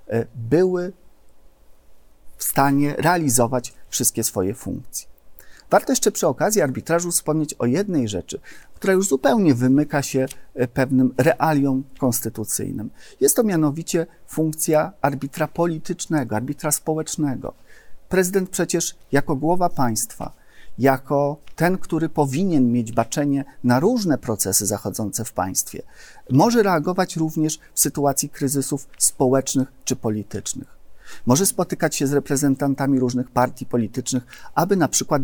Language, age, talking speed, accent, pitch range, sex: Polish, 40-59, 120 wpm, native, 125-155 Hz, male